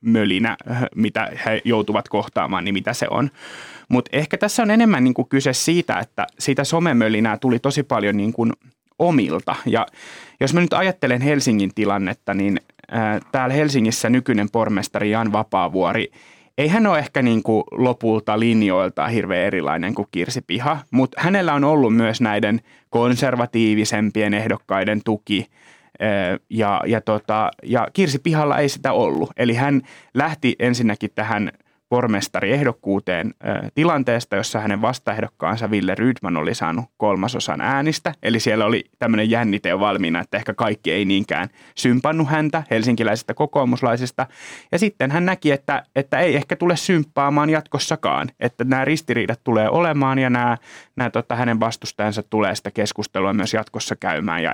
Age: 30-49